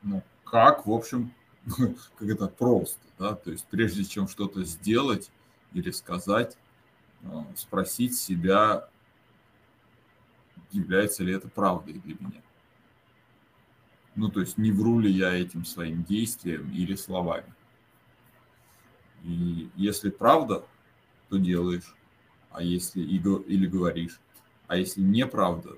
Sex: male